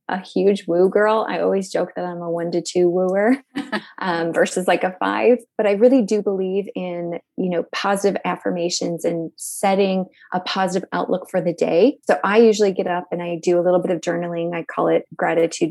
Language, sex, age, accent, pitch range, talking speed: English, female, 20-39, American, 175-210 Hz, 205 wpm